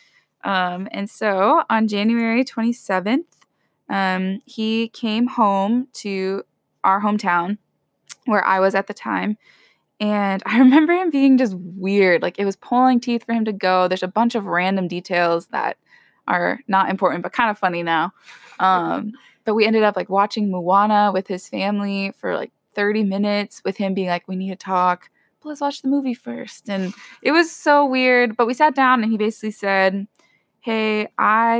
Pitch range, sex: 185-230 Hz, female